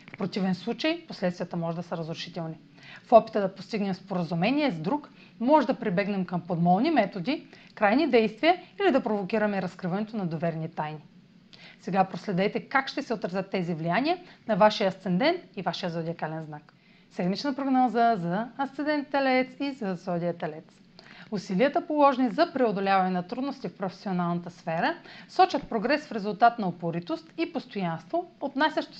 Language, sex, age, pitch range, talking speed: Bulgarian, female, 40-59, 185-255 Hz, 150 wpm